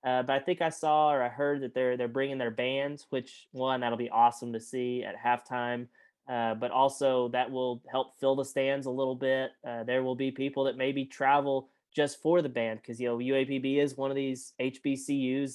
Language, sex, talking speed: English, male, 220 wpm